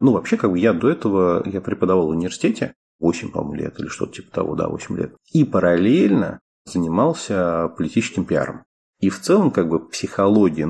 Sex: male